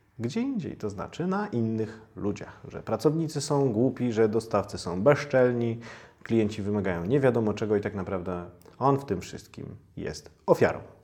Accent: native